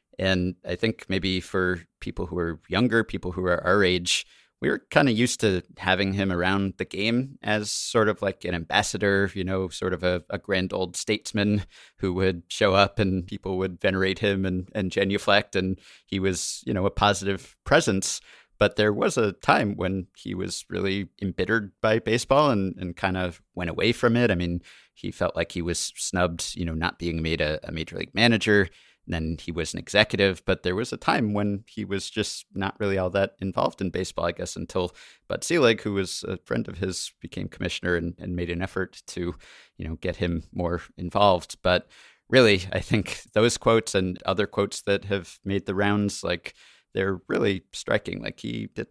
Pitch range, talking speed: 85-100 Hz, 200 wpm